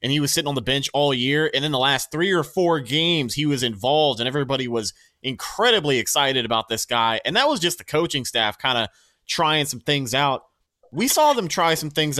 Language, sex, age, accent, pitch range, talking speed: English, male, 30-49, American, 120-155 Hz, 230 wpm